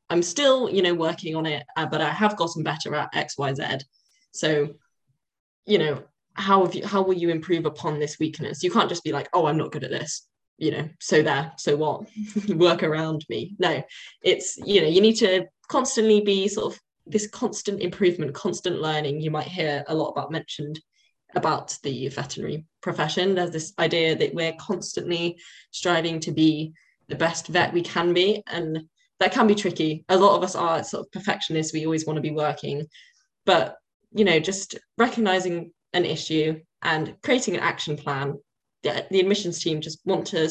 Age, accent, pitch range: 10-29, British, 155-195 Hz